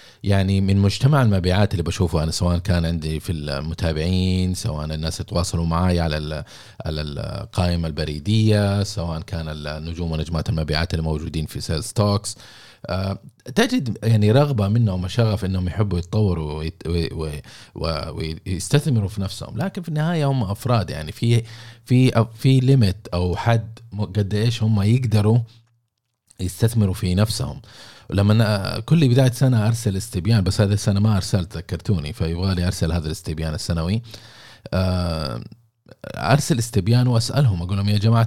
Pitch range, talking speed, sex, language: 90-115 Hz, 130 wpm, male, Arabic